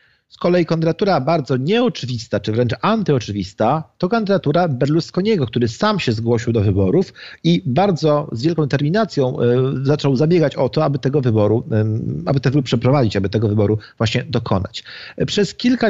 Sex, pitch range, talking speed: male, 115-165 Hz, 150 wpm